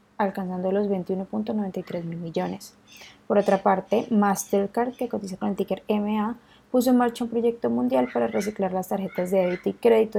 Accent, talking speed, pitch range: Colombian, 170 wpm, 185-225 Hz